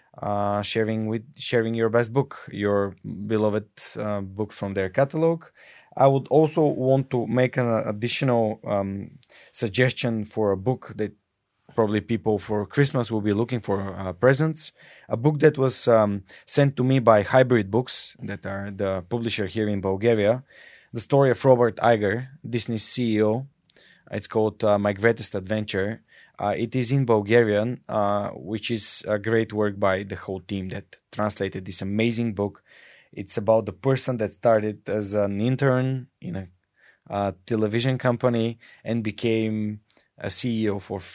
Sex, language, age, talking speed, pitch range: male, Bulgarian, 20-39, 155 wpm, 105-125 Hz